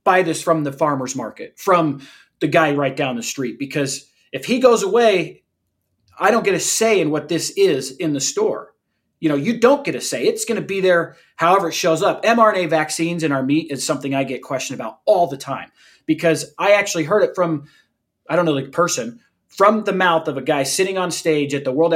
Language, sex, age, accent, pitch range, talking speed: English, male, 30-49, American, 145-190 Hz, 225 wpm